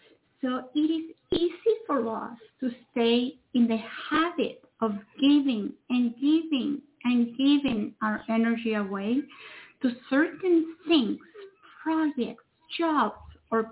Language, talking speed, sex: English, 115 wpm, female